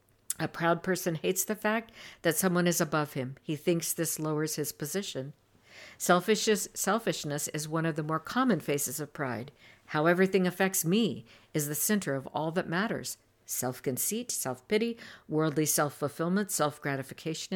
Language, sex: English, female